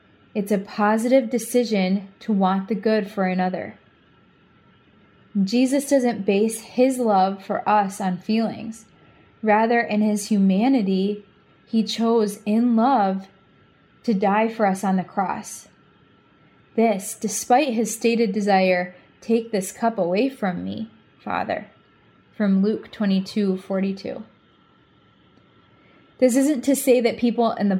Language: English